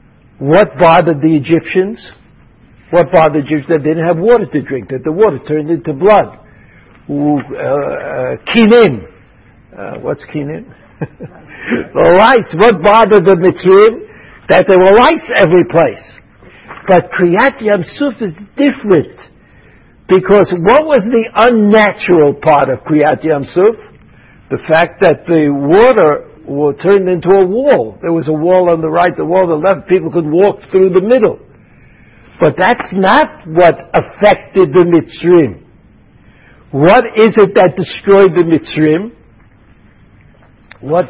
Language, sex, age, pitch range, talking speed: English, male, 60-79, 155-220 Hz, 140 wpm